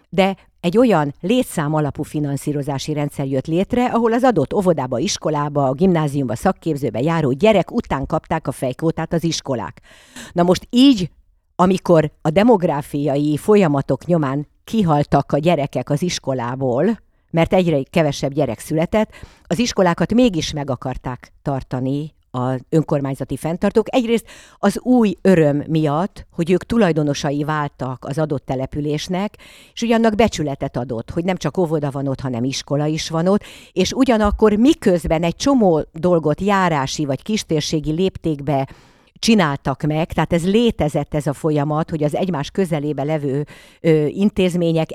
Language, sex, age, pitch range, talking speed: Hungarian, female, 50-69, 140-185 Hz, 140 wpm